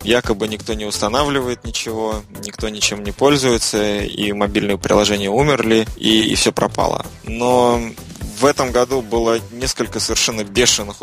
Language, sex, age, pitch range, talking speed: Russian, male, 20-39, 105-120 Hz, 135 wpm